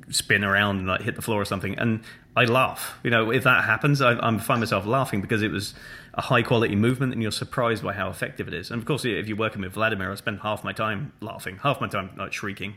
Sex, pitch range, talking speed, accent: male, 100-125 Hz, 275 wpm, British